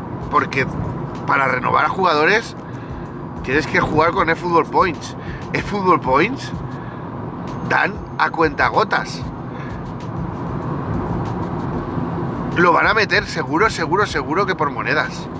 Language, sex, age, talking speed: Spanish, male, 40-59, 105 wpm